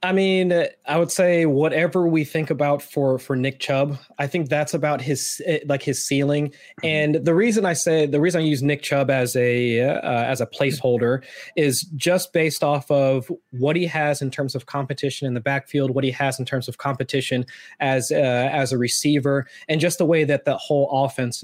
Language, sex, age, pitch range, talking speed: English, male, 20-39, 130-150 Hz, 205 wpm